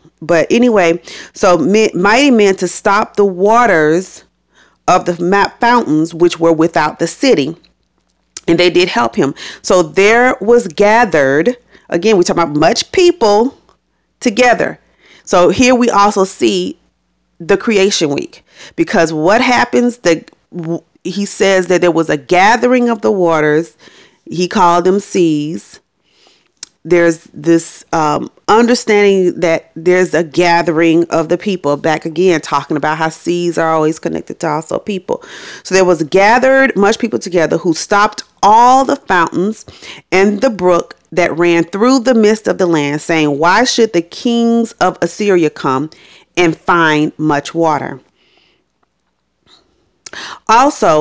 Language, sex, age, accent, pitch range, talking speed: English, female, 40-59, American, 165-210 Hz, 140 wpm